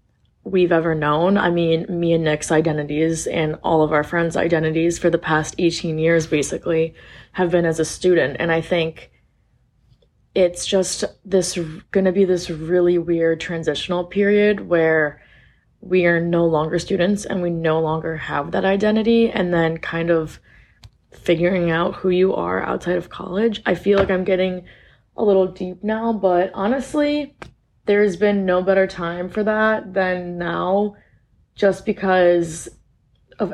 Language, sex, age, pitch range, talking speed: English, female, 20-39, 165-185 Hz, 155 wpm